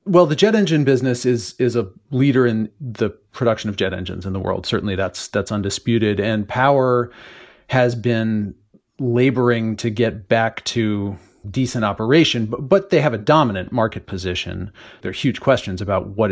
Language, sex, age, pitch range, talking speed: English, male, 40-59, 105-125 Hz, 175 wpm